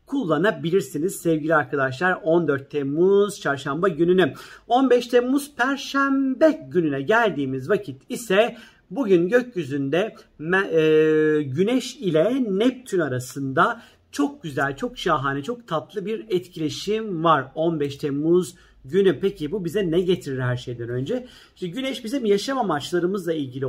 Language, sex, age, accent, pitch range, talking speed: Turkish, male, 50-69, native, 155-205 Hz, 120 wpm